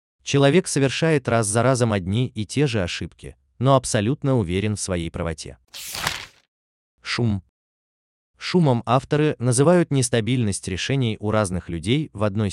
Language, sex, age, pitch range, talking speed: Russian, male, 30-49, 90-135 Hz, 130 wpm